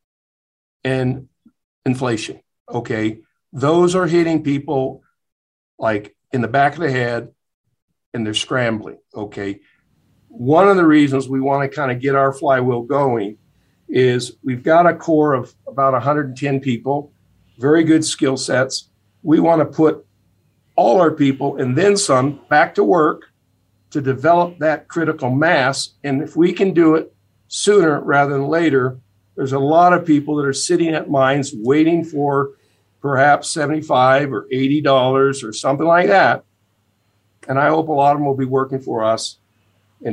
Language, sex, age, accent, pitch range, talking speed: English, male, 50-69, American, 120-150 Hz, 155 wpm